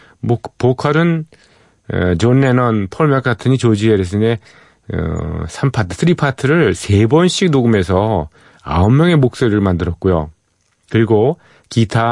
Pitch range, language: 95-130 Hz, Korean